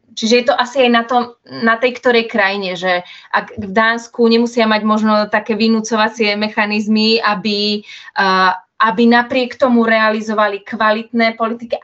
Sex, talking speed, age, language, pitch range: female, 140 wpm, 20-39, Slovak, 195-220 Hz